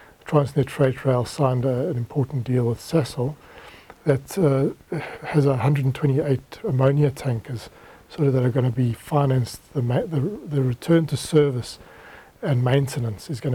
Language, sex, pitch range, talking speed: English, male, 125-145 Hz, 155 wpm